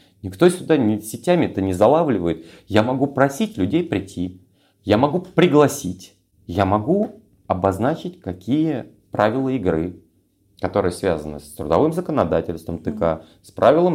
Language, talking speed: Russian, 120 wpm